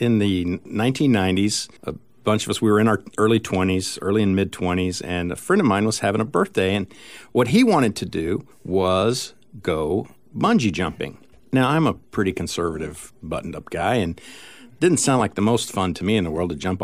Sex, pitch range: male, 90-110 Hz